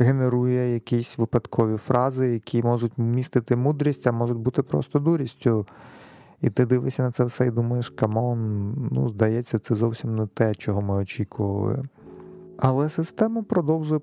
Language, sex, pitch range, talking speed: Ukrainian, male, 115-135 Hz, 145 wpm